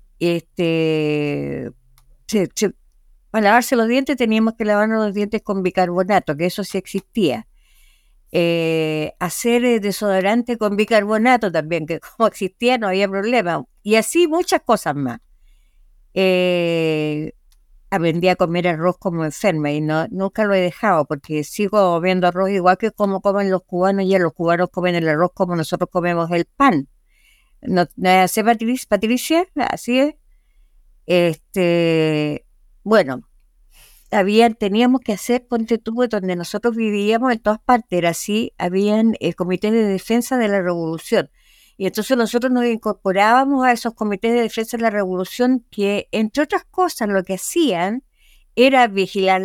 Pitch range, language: 180-235 Hz, English